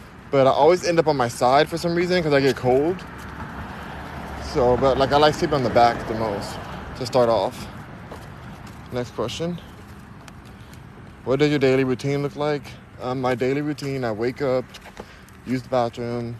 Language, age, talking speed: English, 20-39, 175 wpm